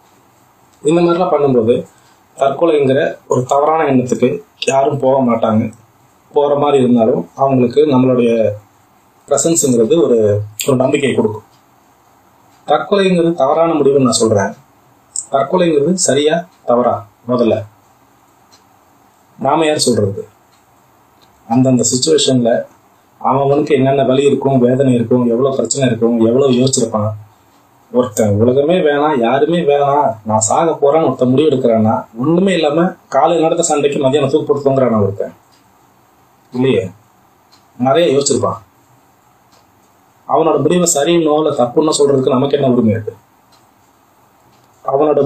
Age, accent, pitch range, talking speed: 30-49, native, 120-150 Hz, 105 wpm